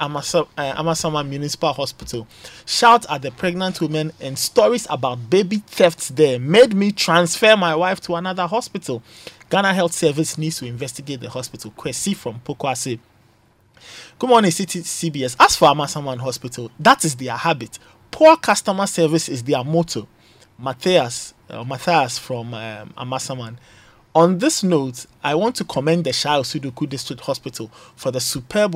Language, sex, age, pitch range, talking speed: English, male, 20-39, 120-170 Hz, 150 wpm